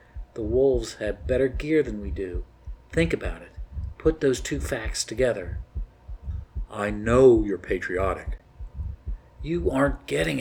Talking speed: 135 wpm